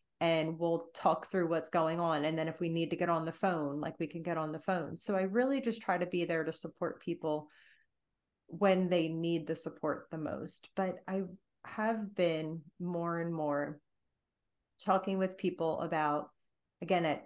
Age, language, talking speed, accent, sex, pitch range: 30-49, English, 190 wpm, American, female, 160-195 Hz